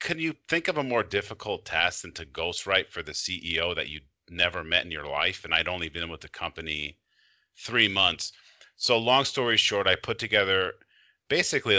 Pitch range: 85-110 Hz